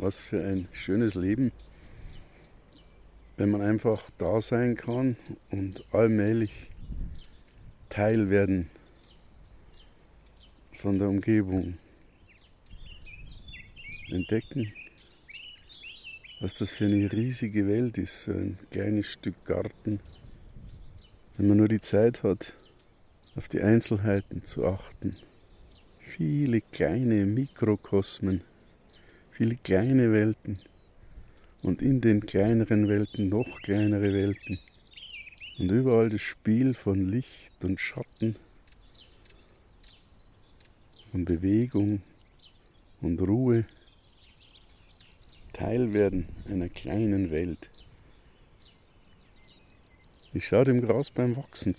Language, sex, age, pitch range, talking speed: German, male, 50-69, 90-110 Hz, 90 wpm